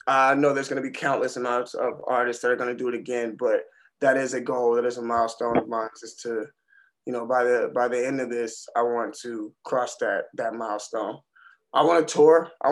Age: 20-39